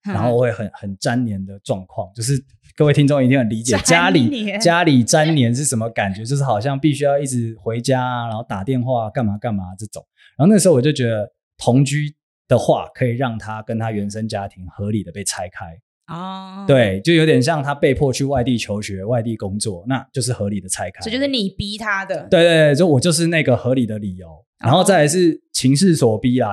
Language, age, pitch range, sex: Chinese, 20-39, 105-140 Hz, male